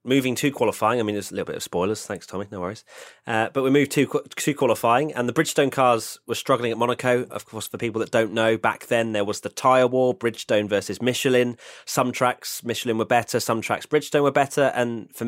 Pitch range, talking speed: 105-130 Hz, 230 wpm